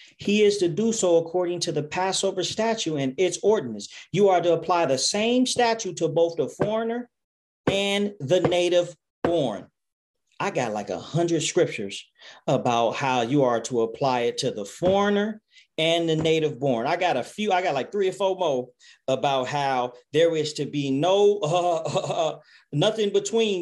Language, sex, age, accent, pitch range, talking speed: English, male, 40-59, American, 155-225 Hz, 180 wpm